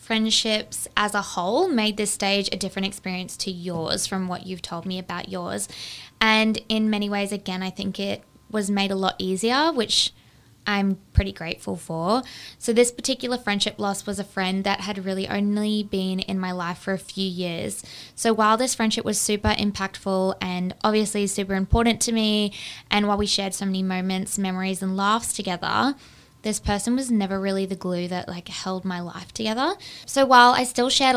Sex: female